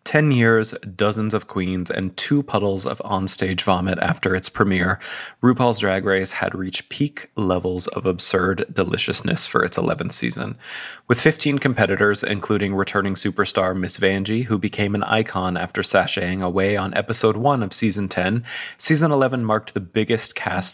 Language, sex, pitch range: English, male, 95-115 Hz